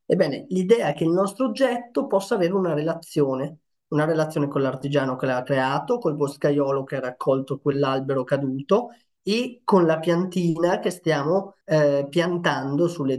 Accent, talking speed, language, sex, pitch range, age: native, 155 wpm, Italian, male, 150-185 Hz, 20-39